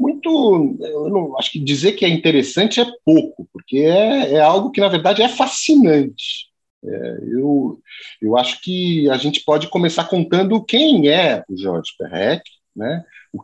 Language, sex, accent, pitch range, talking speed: Portuguese, male, Brazilian, 150-210 Hz, 165 wpm